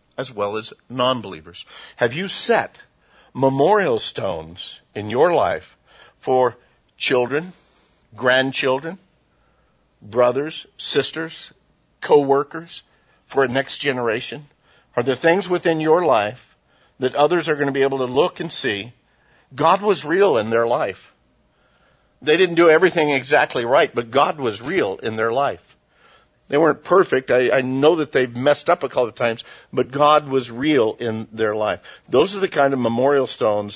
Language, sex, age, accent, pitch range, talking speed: English, male, 60-79, American, 120-145 Hz, 155 wpm